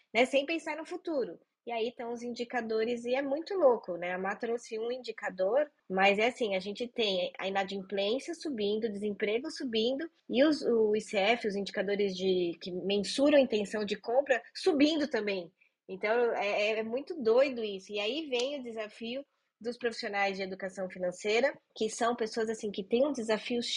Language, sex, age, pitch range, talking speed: Portuguese, female, 20-39, 195-260 Hz, 170 wpm